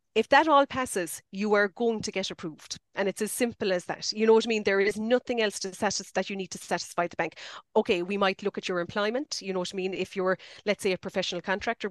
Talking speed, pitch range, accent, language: 265 wpm, 180-210 Hz, Irish, English